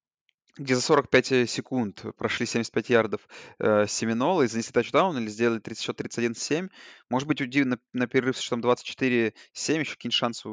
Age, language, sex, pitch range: 20-39, Russian, male, 115-140 Hz